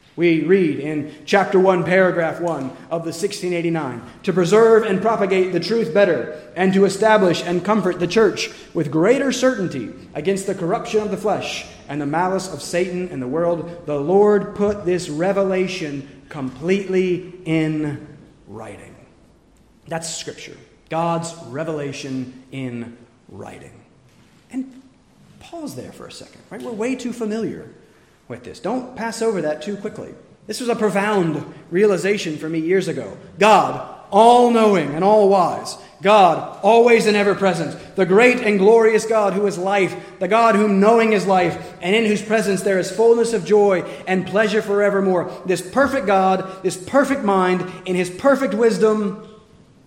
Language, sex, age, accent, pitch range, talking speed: English, male, 30-49, American, 170-215 Hz, 155 wpm